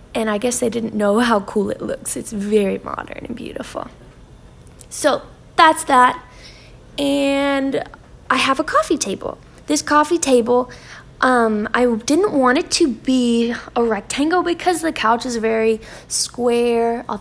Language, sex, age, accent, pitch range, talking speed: English, female, 10-29, American, 230-310 Hz, 150 wpm